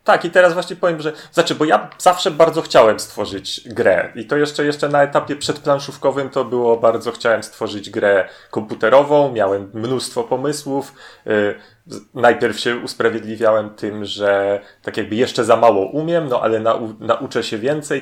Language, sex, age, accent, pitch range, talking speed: Polish, male, 30-49, native, 110-145 Hz, 160 wpm